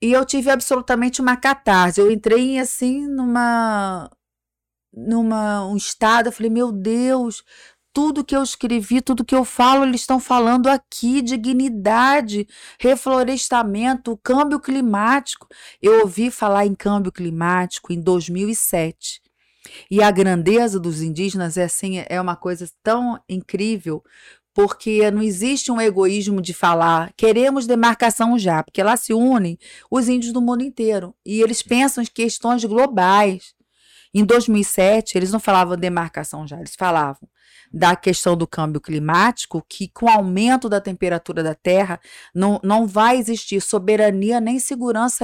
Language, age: Portuguese, 40-59